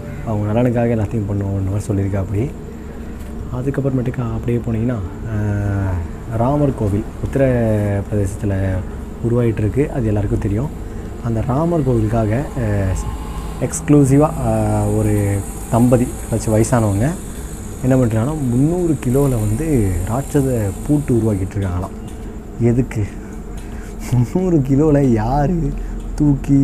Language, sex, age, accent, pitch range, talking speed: Tamil, male, 20-39, native, 105-135 Hz, 85 wpm